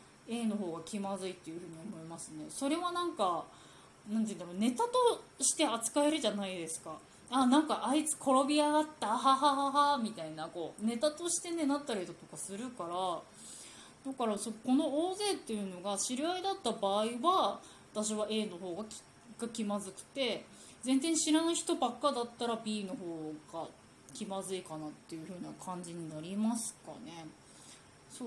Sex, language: female, Japanese